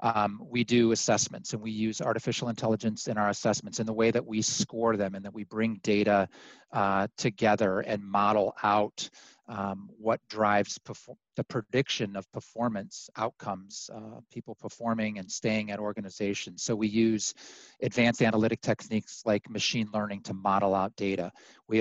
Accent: American